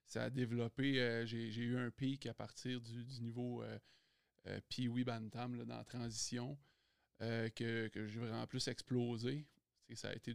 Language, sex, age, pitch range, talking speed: French, male, 20-39, 115-125 Hz, 185 wpm